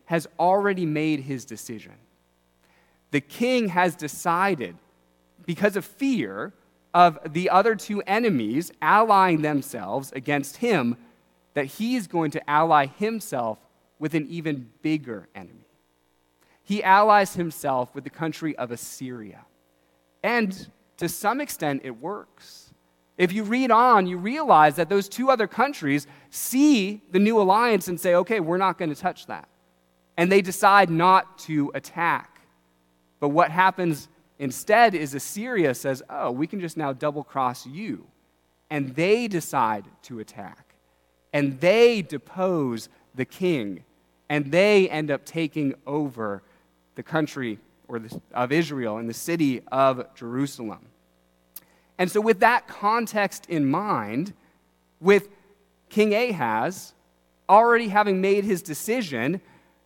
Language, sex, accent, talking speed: English, male, American, 130 wpm